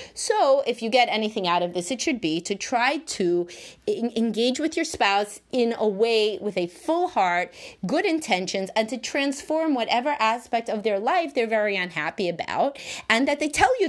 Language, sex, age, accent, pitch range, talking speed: English, female, 30-49, American, 205-290 Hz, 190 wpm